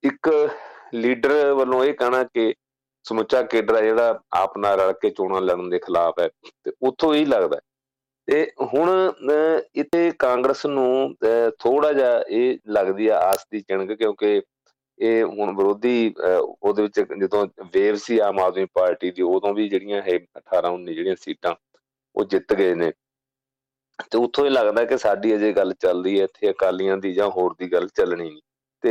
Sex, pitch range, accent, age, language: male, 105-170 Hz, Indian, 40-59, English